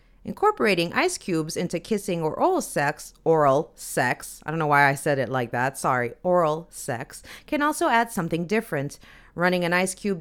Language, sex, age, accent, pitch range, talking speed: English, female, 30-49, American, 155-215 Hz, 180 wpm